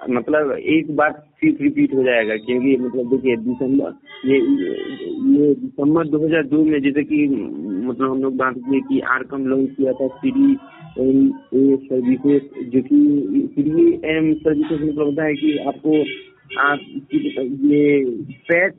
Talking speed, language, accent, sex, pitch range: 145 wpm, Hindi, native, male, 130-155 Hz